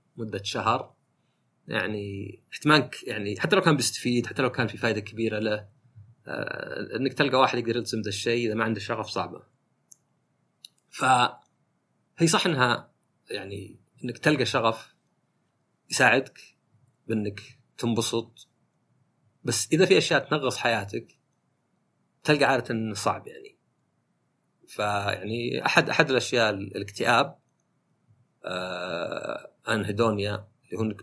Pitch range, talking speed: 105-140 Hz, 115 wpm